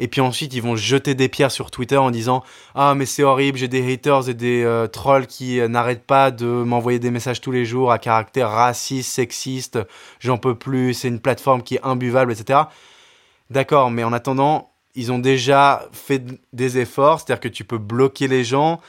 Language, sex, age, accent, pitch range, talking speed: French, male, 20-39, French, 120-140 Hz, 205 wpm